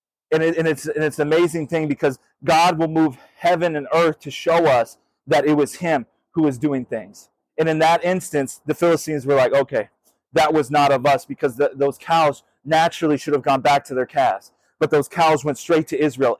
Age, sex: 30-49, male